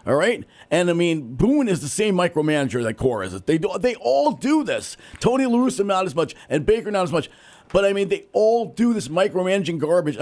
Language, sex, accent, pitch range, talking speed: English, male, American, 135-185 Hz, 230 wpm